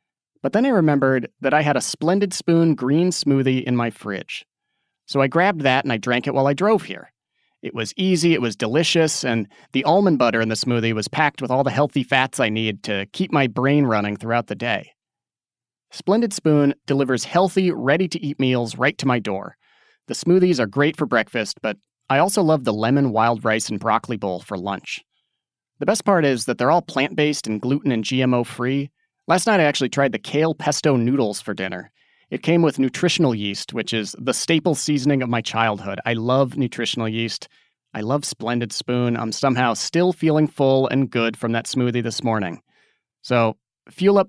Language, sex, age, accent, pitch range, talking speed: English, male, 30-49, American, 120-155 Hz, 195 wpm